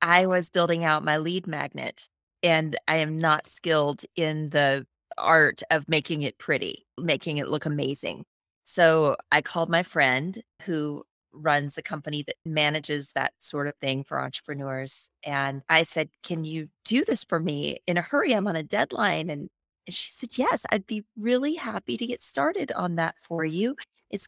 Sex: female